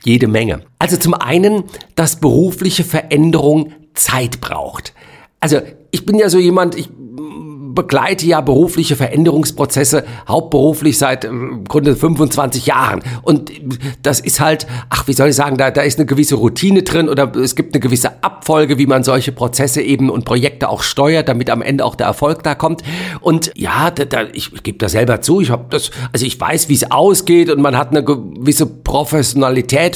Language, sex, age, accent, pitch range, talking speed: German, male, 50-69, German, 135-170 Hz, 180 wpm